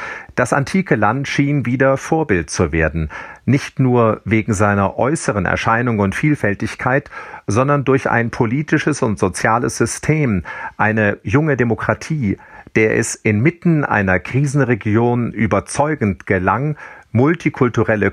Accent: German